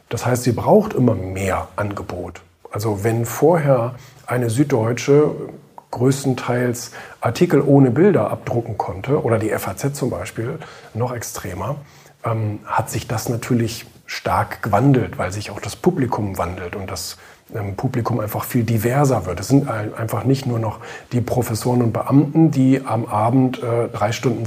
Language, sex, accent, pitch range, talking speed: German, male, German, 110-135 Hz, 150 wpm